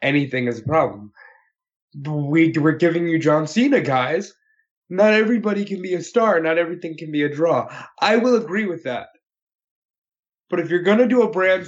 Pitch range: 155-205 Hz